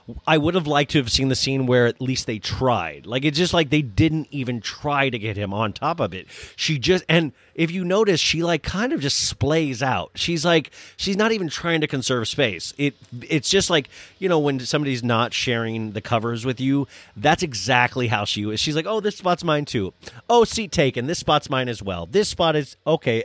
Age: 30-49